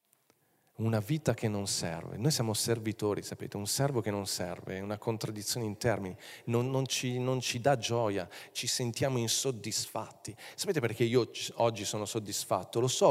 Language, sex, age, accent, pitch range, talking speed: Italian, male, 40-59, native, 110-130 Hz, 170 wpm